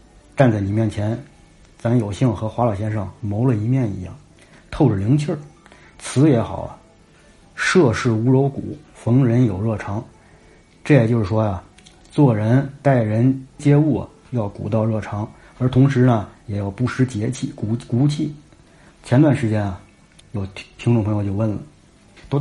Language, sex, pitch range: Chinese, male, 105-140 Hz